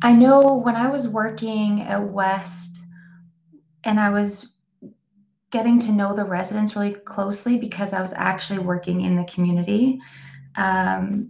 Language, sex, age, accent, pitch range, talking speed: English, female, 20-39, American, 175-200 Hz, 145 wpm